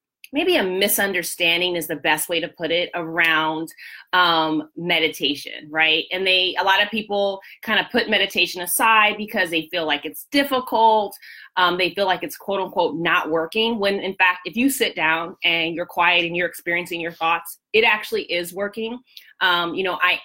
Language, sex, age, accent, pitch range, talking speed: English, female, 30-49, American, 175-220 Hz, 185 wpm